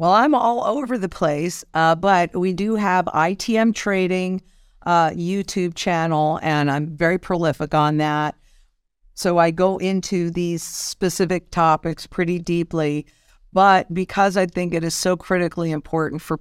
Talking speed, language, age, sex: 150 wpm, English, 50-69, female